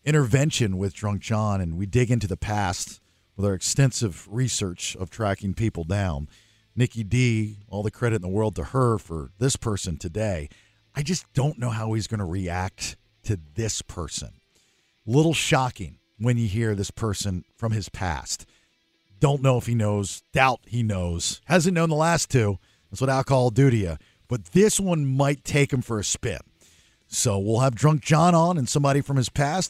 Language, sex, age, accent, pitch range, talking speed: English, male, 50-69, American, 100-150 Hz, 190 wpm